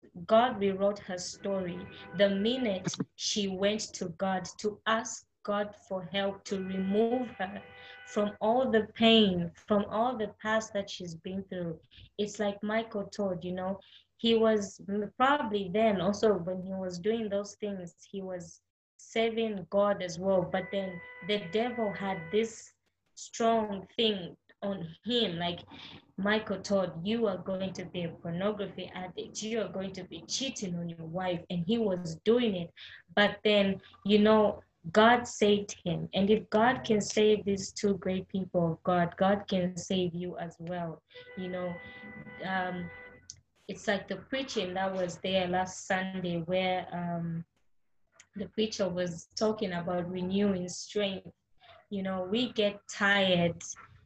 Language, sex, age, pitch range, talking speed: English, female, 20-39, 180-215 Hz, 155 wpm